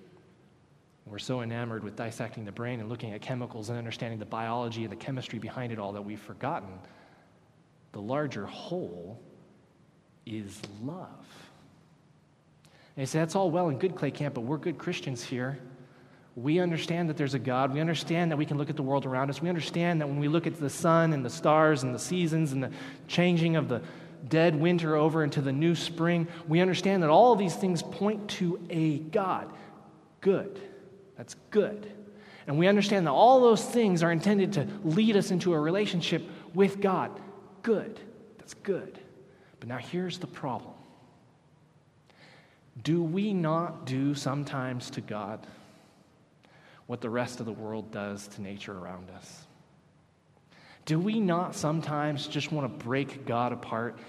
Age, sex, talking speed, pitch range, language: 20-39, male, 170 wpm, 120-175 Hz, English